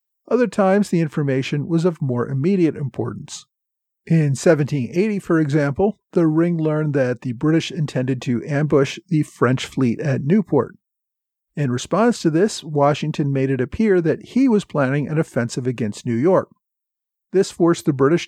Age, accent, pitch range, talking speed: 50-69, American, 135-170 Hz, 160 wpm